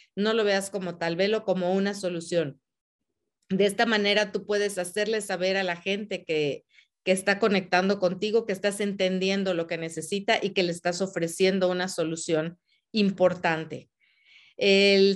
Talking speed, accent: 155 wpm, Mexican